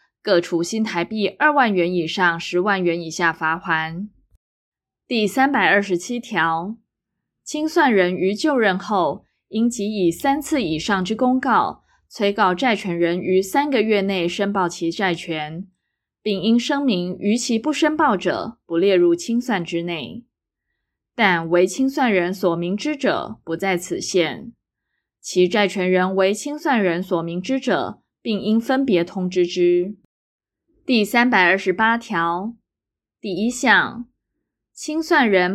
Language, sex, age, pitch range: Chinese, female, 20-39, 180-235 Hz